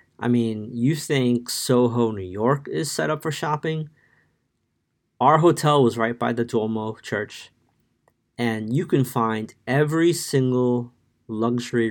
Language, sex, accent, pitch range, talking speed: English, male, American, 110-130 Hz, 135 wpm